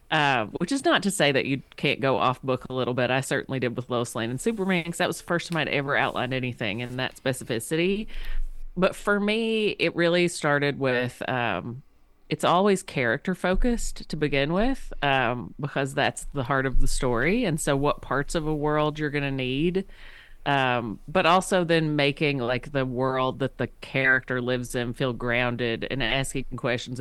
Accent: American